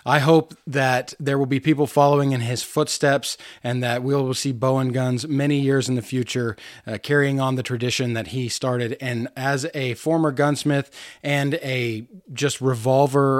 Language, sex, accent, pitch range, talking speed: English, male, American, 125-150 Hz, 180 wpm